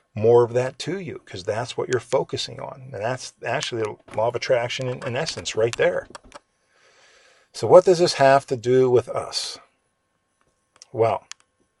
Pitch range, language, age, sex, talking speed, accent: 100-125 Hz, English, 50-69, male, 170 wpm, American